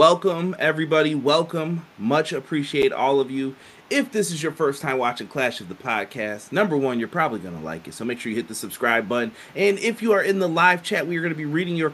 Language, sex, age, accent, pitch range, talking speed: English, male, 30-49, American, 125-155 Hz, 240 wpm